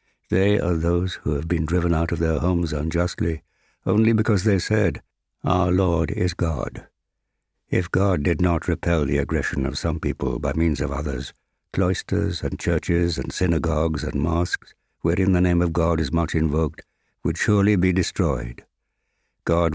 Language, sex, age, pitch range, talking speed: English, male, 60-79, 80-95 Hz, 165 wpm